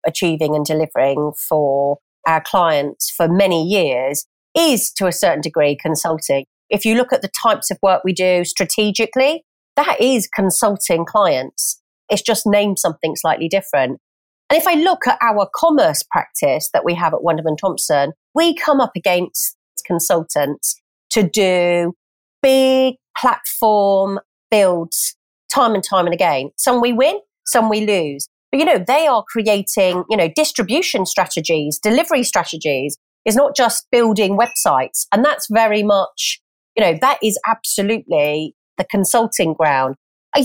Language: English